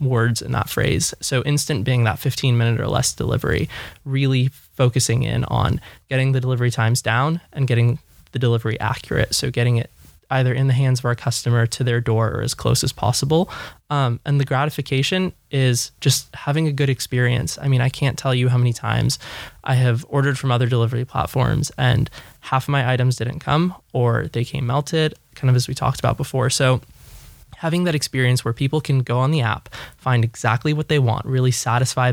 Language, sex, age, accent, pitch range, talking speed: English, male, 20-39, American, 120-140 Hz, 200 wpm